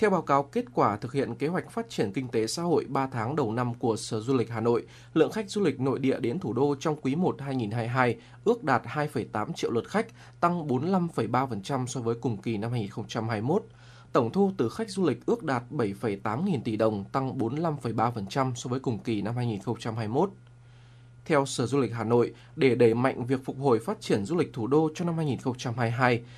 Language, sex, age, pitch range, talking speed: Vietnamese, male, 20-39, 120-145 Hz, 210 wpm